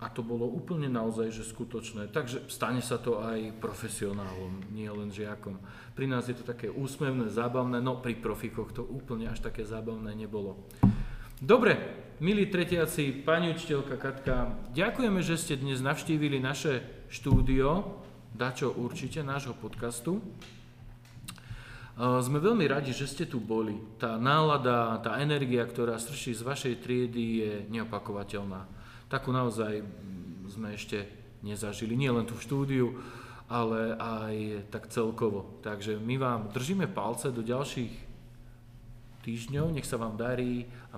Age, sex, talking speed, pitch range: 40-59, male, 135 wpm, 115-135 Hz